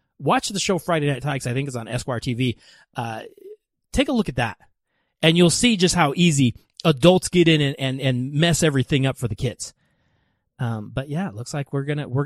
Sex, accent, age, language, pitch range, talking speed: male, American, 30-49, English, 140-195 Hz, 220 wpm